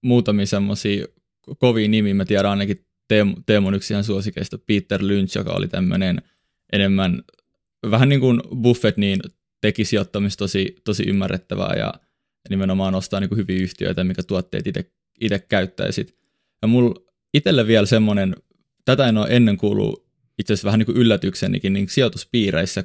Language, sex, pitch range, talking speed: Finnish, male, 95-110 Hz, 145 wpm